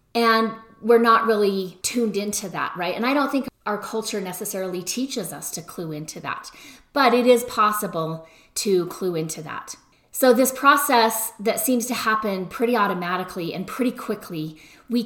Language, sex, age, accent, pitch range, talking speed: English, female, 30-49, American, 180-235 Hz, 165 wpm